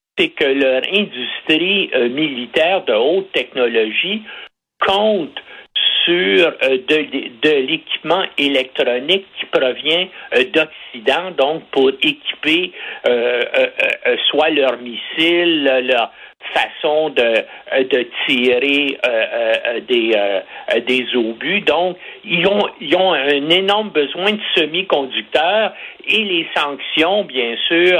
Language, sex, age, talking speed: French, male, 60-79, 120 wpm